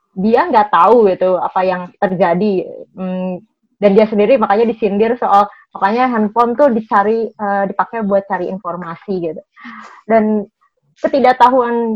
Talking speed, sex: 130 wpm, female